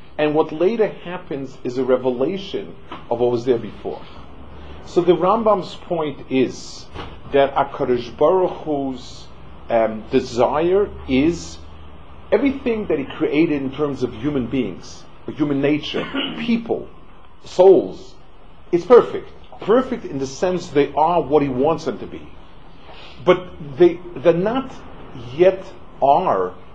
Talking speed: 125 wpm